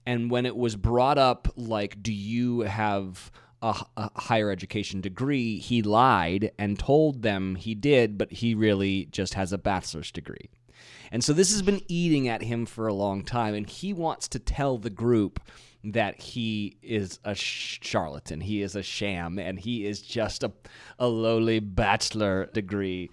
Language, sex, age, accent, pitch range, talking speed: English, male, 30-49, American, 105-135 Hz, 175 wpm